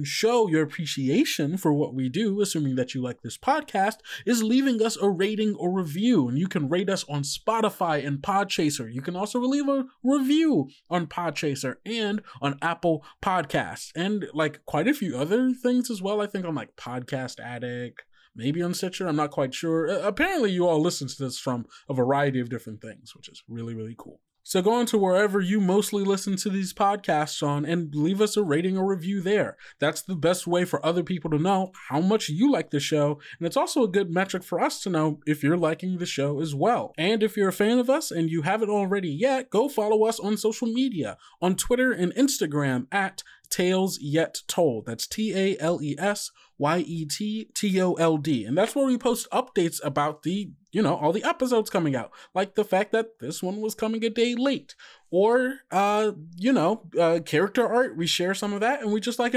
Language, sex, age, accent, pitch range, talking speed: English, male, 20-39, American, 155-220 Hz, 215 wpm